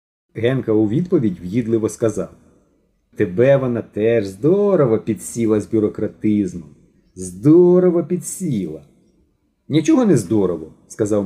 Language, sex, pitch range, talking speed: Ukrainian, male, 105-160 Hz, 100 wpm